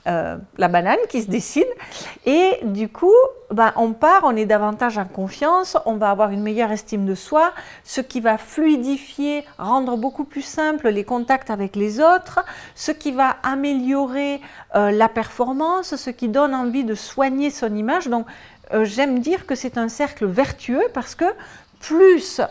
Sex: female